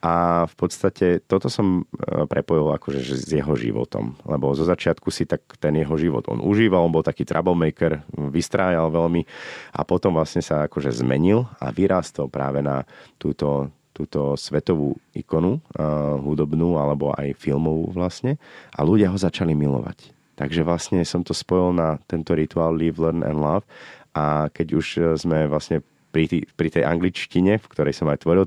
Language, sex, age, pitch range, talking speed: Slovak, male, 30-49, 75-90 Hz, 165 wpm